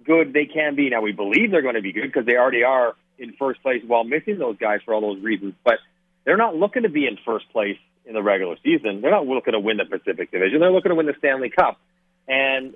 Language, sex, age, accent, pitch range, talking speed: English, male, 40-59, American, 110-165 Hz, 265 wpm